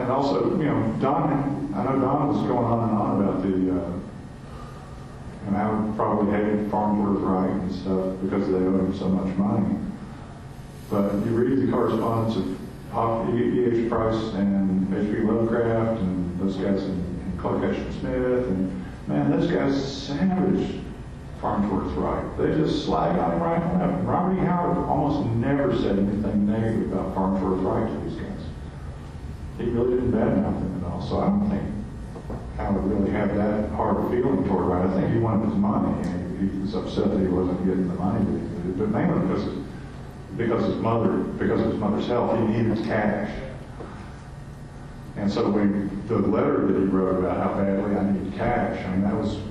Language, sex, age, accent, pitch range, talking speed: English, male, 50-69, American, 95-110 Hz, 185 wpm